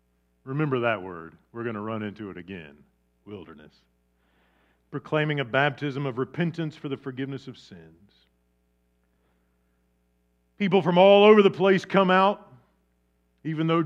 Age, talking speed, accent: 40-59, 135 wpm, American